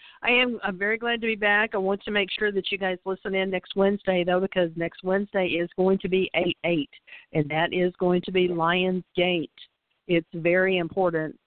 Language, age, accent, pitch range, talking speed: English, 50-69, American, 160-185 Hz, 215 wpm